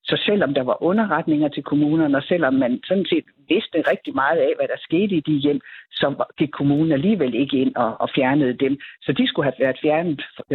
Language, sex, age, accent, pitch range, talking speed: Danish, female, 60-79, native, 150-225 Hz, 210 wpm